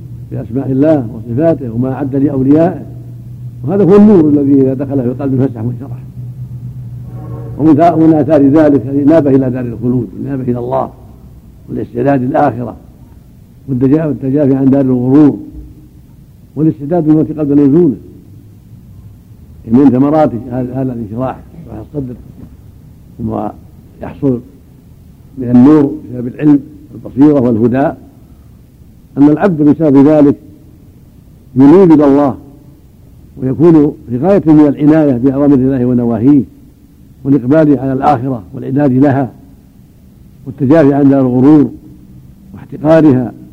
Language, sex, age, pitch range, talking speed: Arabic, male, 70-89, 120-145 Hz, 100 wpm